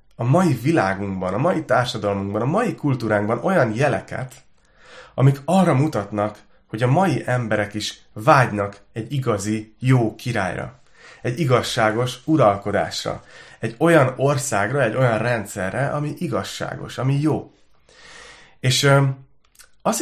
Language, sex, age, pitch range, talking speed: Hungarian, male, 30-49, 105-140 Hz, 115 wpm